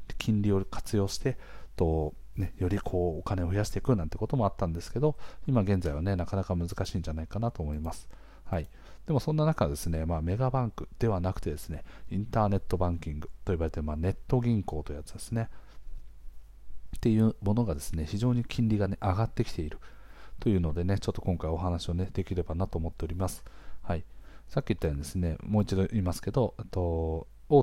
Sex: male